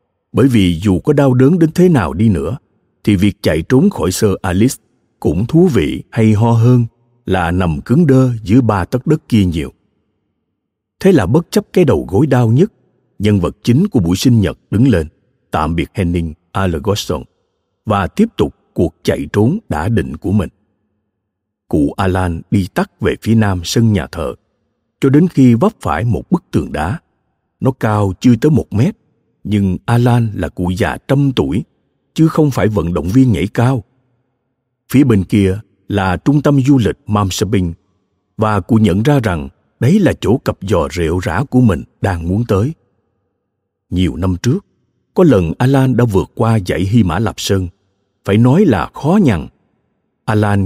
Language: Vietnamese